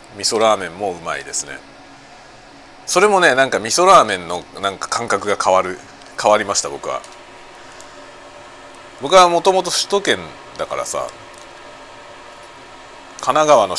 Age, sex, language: 40-59, male, Japanese